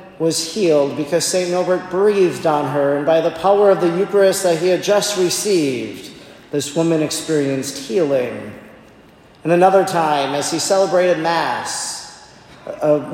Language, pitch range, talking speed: English, 155-180 Hz, 145 wpm